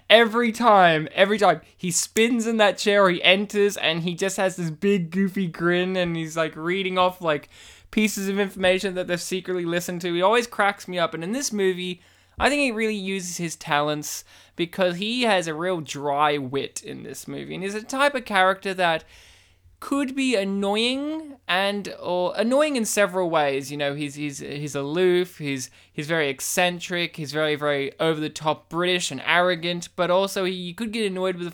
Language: English